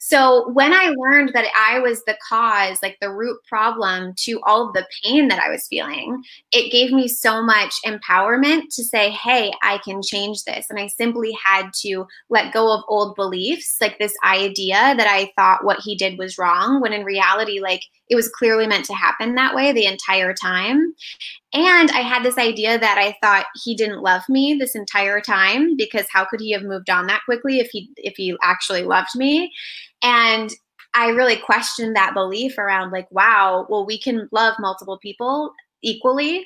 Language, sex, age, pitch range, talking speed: English, female, 20-39, 195-250 Hz, 195 wpm